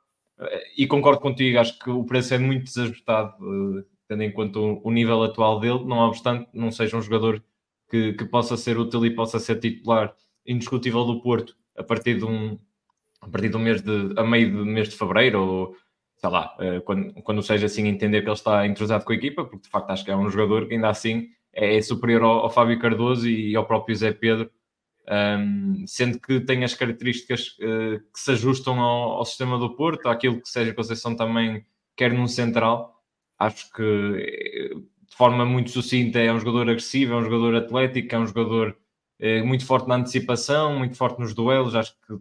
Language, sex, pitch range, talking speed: Portuguese, male, 110-125 Hz, 195 wpm